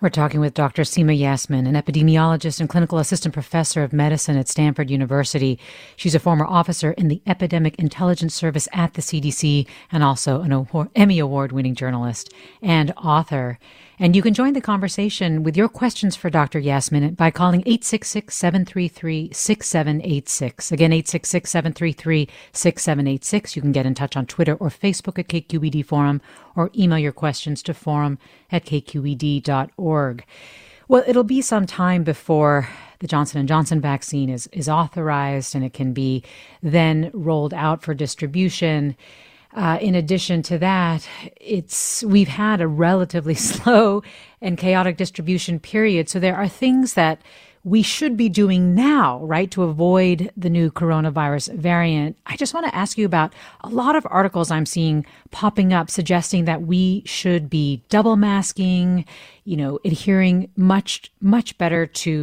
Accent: American